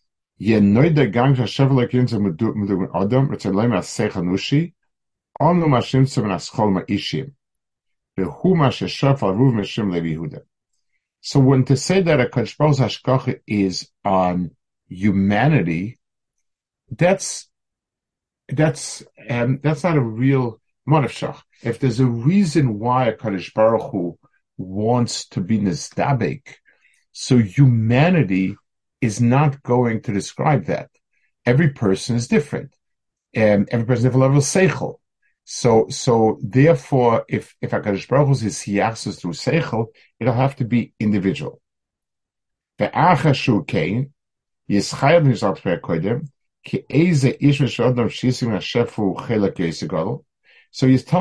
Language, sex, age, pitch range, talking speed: English, male, 50-69, 105-140 Hz, 80 wpm